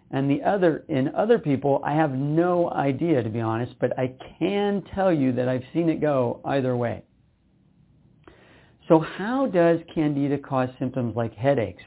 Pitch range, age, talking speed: 125-160 Hz, 50-69, 165 wpm